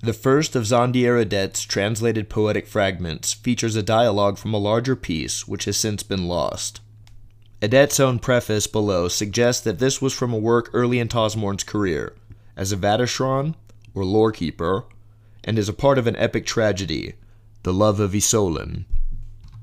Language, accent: English, American